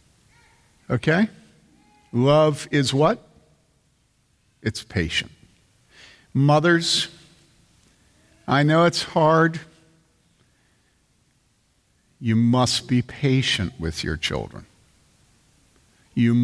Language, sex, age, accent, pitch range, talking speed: English, male, 50-69, American, 120-155 Hz, 70 wpm